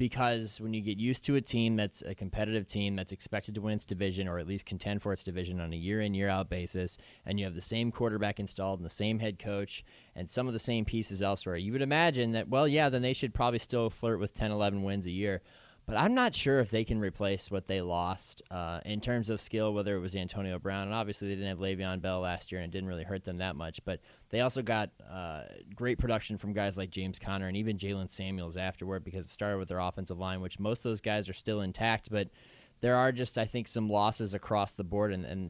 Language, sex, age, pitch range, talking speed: English, male, 20-39, 95-110 Hz, 255 wpm